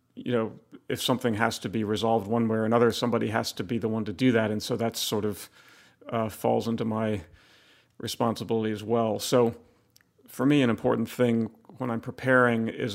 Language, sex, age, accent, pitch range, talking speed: English, male, 40-59, American, 110-125 Hz, 200 wpm